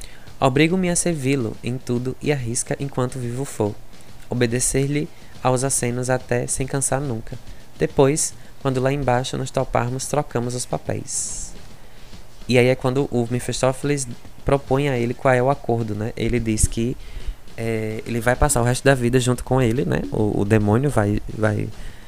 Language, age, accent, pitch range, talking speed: Portuguese, 20-39, Brazilian, 115-140 Hz, 165 wpm